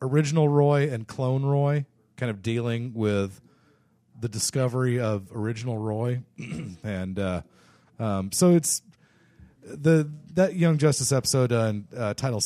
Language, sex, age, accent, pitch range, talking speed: English, male, 40-59, American, 95-130 Hz, 130 wpm